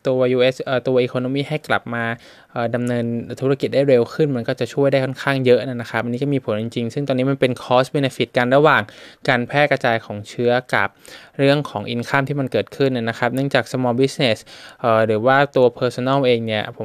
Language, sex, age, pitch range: Thai, male, 20-39, 120-140 Hz